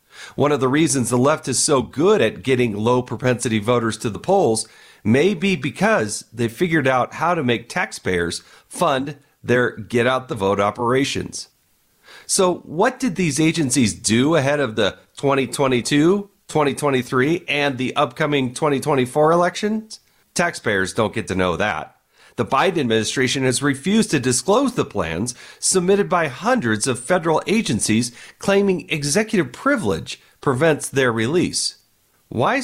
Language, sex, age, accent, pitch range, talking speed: English, male, 40-59, American, 120-175 Hz, 145 wpm